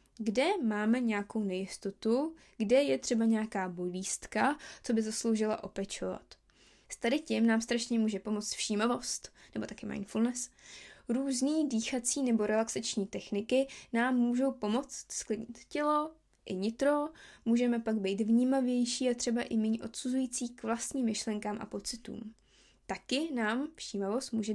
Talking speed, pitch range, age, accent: 130 wpm, 205-245 Hz, 20-39, native